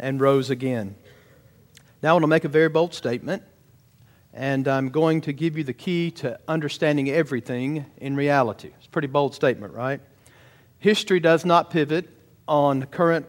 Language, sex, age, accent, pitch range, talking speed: English, male, 50-69, American, 135-165 Hz, 165 wpm